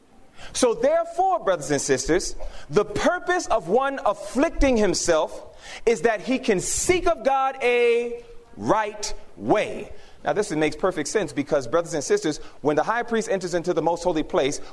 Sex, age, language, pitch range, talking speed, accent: male, 30-49, English, 180-305 Hz, 165 wpm, American